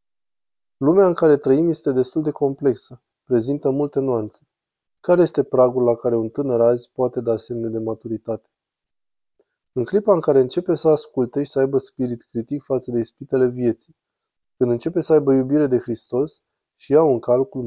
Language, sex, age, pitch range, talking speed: Romanian, male, 20-39, 120-145 Hz, 175 wpm